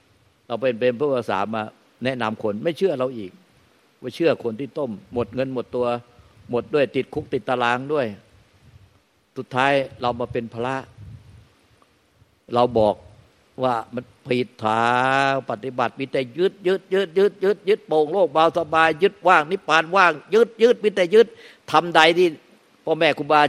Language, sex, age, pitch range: Thai, male, 60-79, 115-155 Hz